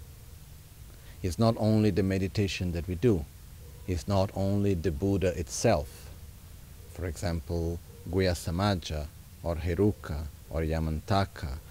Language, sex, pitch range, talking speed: Italian, male, 85-105 Hz, 115 wpm